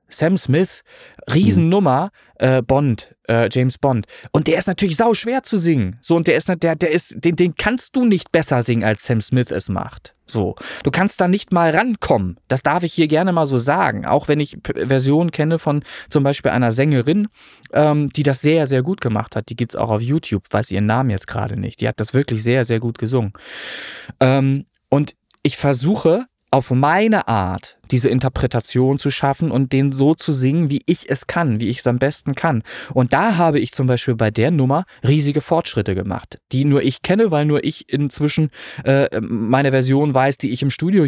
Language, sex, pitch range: German, male, 120-165 Hz